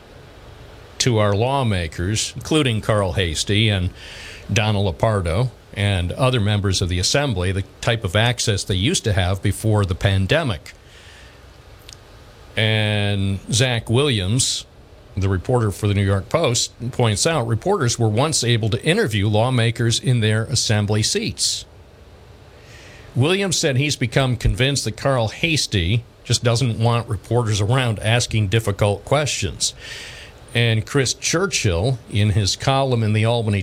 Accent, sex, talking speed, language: American, male, 130 wpm, English